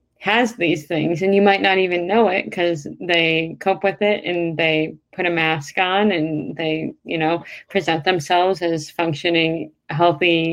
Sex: female